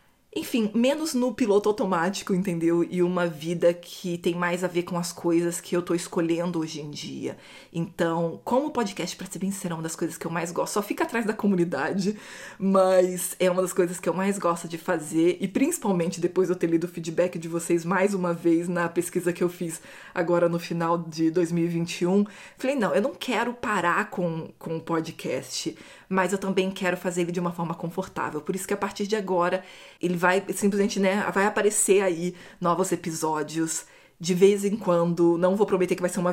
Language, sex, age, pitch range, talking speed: Portuguese, female, 20-39, 170-195 Hz, 210 wpm